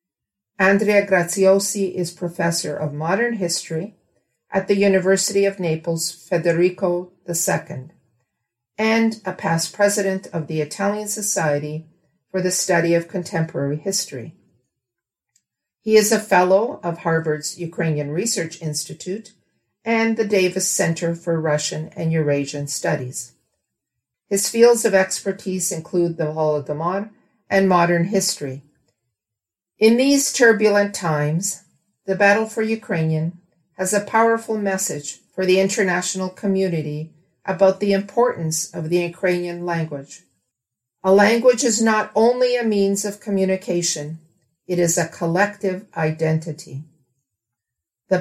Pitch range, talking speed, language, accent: 160-200 Hz, 115 wpm, English, American